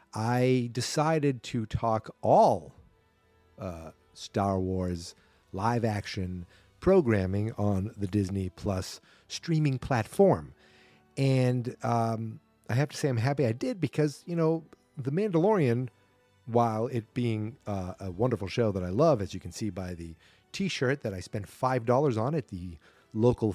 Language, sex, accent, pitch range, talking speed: English, male, American, 100-135 Hz, 145 wpm